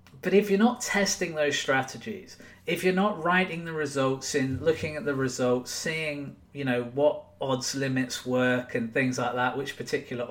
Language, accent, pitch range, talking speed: English, British, 125-165 Hz, 180 wpm